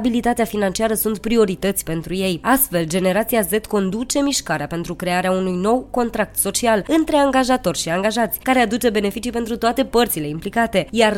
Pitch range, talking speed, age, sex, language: 185-260 Hz, 155 wpm, 20-39, female, Romanian